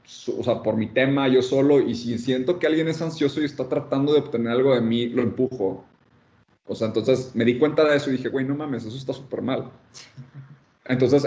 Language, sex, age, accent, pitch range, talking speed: Spanish, male, 30-49, Mexican, 115-140 Hz, 225 wpm